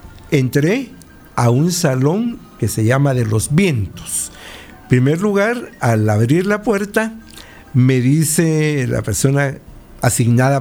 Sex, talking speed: male, 125 wpm